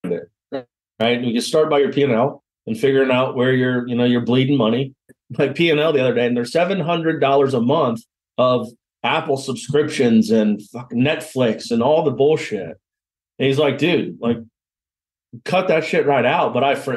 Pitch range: 125-155 Hz